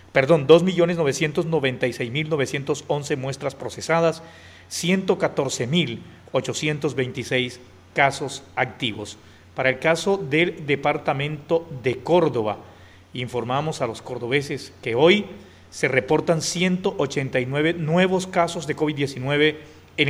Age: 40-59